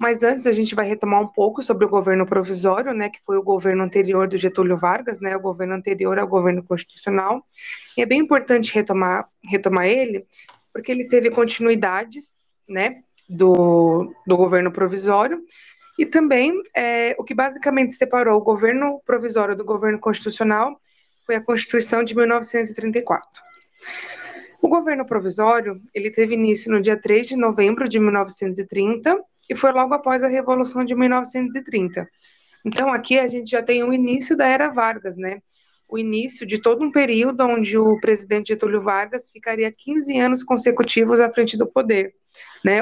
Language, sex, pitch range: Portuguese, female, 200-250 Hz